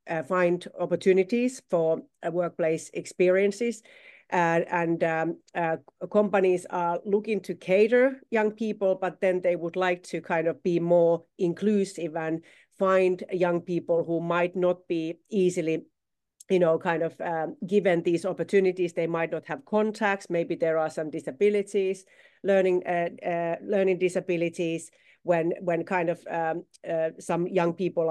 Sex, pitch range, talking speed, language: female, 165-185 Hz, 150 wpm, English